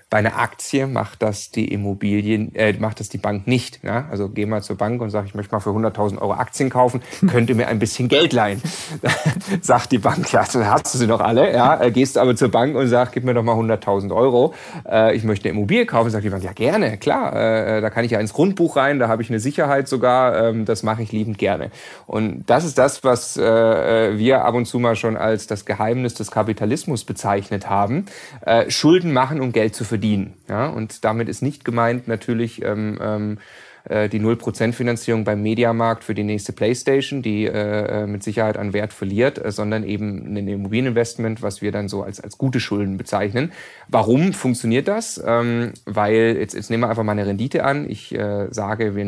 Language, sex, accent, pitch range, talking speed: German, male, German, 105-125 Hz, 215 wpm